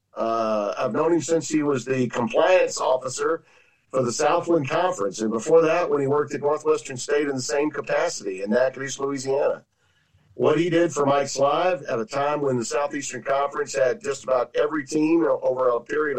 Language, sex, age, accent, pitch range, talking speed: English, male, 50-69, American, 135-185 Hz, 190 wpm